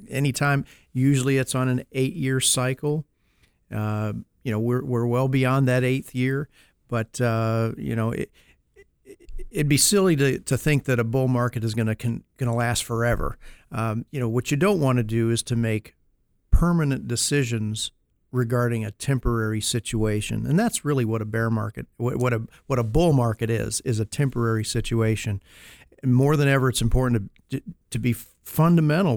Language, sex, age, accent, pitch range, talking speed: English, male, 50-69, American, 115-135 Hz, 175 wpm